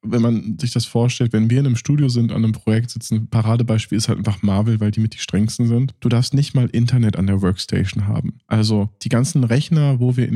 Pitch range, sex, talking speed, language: 110-130 Hz, male, 245 wpm, German